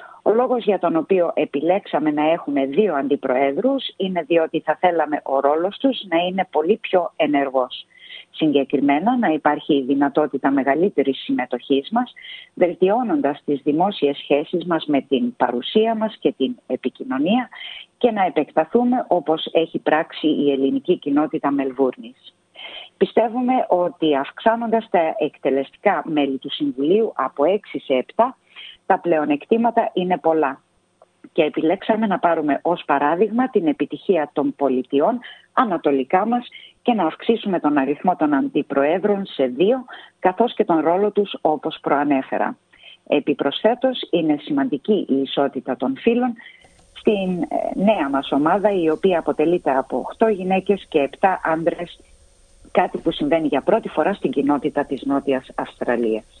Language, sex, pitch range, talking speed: Greek, female, 140-210 Hz, 135 wpm